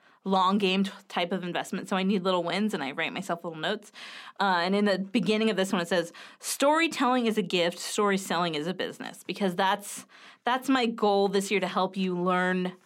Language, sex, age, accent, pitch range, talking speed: English, female, 20-39, American, 180-210 Hz, 220 wpm